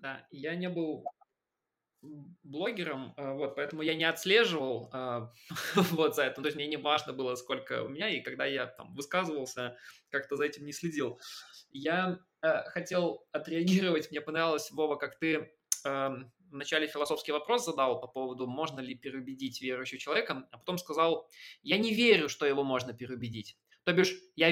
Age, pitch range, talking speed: 20-39, 145-195 Hz, 155 wpm